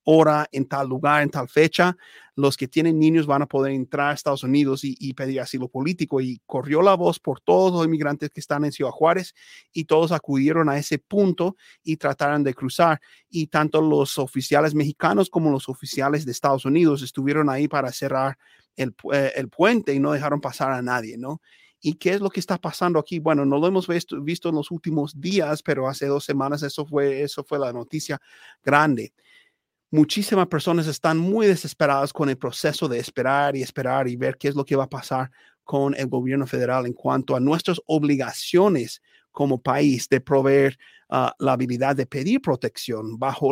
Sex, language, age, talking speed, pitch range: male, Spanish, 30-49, 195 wpm, 135-160 Hz